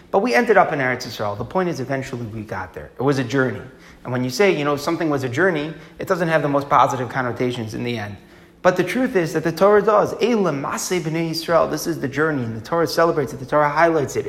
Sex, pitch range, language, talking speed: male, 135-175 Hz, English, 250 wpm